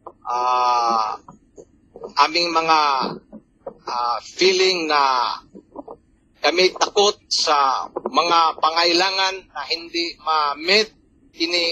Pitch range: 140-185 Hz